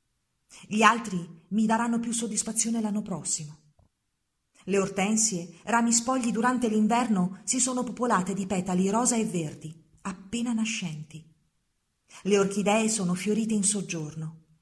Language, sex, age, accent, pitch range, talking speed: Italian, female, 40-59, native, 175-220 Hz, 125 wpm